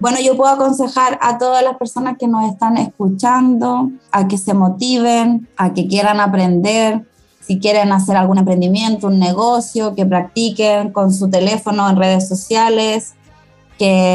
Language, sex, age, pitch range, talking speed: Spanish, female, 20-39, 190-225 Hz, 155 wpm